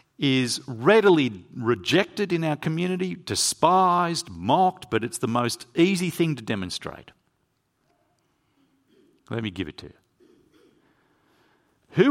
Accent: Australian